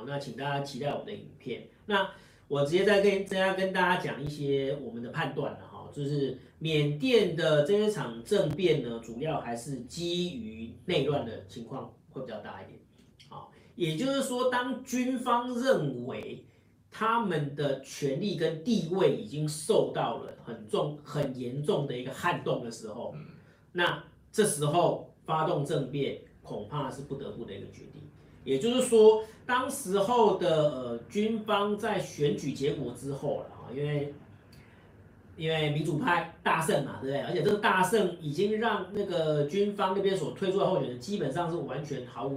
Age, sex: 40-59, male